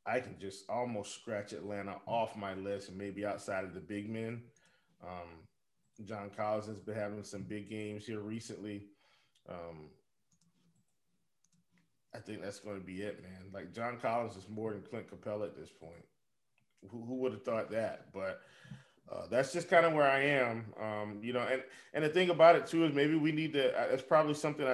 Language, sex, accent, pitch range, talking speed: English, male, American, 115-150 Hz, 195 wpm